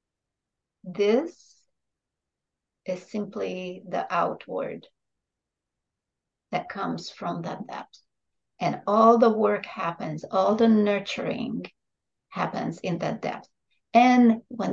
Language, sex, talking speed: English, female, 100 wpm